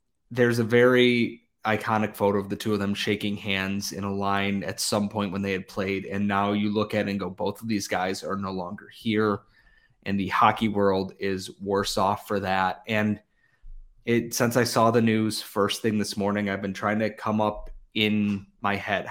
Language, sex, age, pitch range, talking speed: English, male, 20-39, 100-115 Hz, 210 wpm